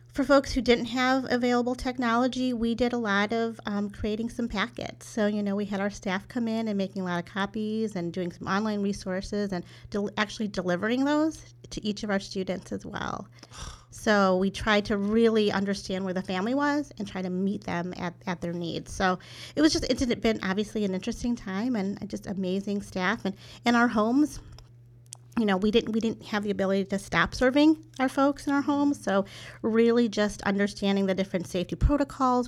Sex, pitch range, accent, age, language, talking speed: female, 185-225 Hz, American, 40-59, English, 205 wpm